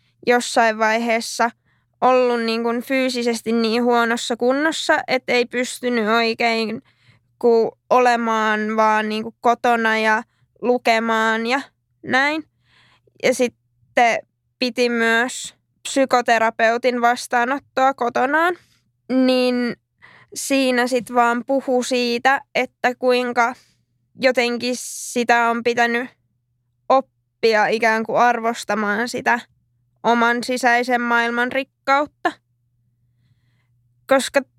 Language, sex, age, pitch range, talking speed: Finnish, female, 20-39, 215-245 Hz, 90 wpm